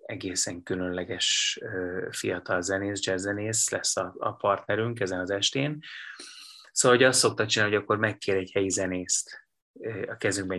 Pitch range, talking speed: 95-115 Hz, 135 wpm